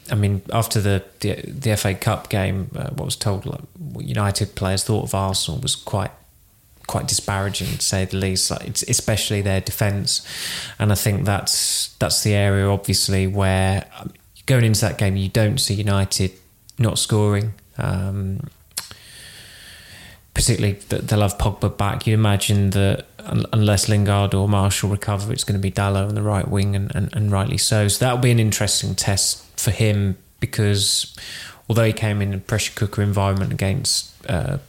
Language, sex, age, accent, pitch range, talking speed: English, male, 20-39, British, 100-110 Hz, 175 wpm